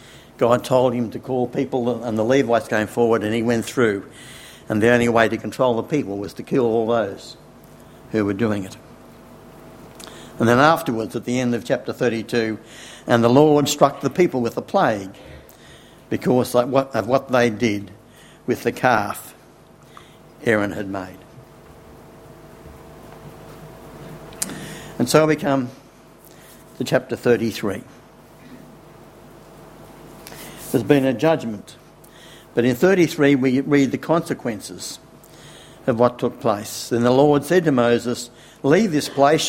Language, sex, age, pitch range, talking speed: English, male, 60-79, 120-145 Hz, 140 wpm